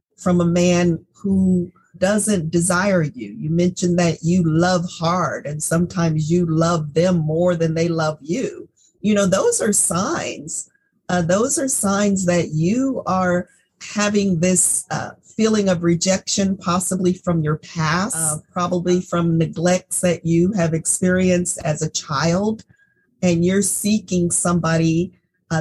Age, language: 40-59, English